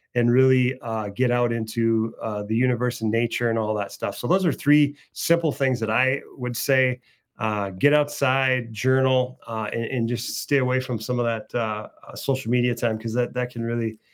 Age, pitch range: 30-49, 115-140 Hz